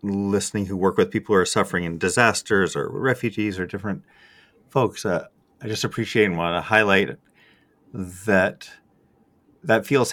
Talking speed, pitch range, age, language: 155 wpm, 85-105 Hz, 30-49, English